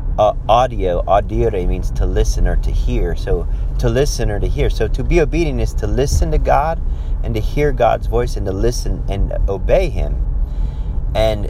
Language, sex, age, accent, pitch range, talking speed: English, male, 30-49, American, 90-115 Hz, 190 wpm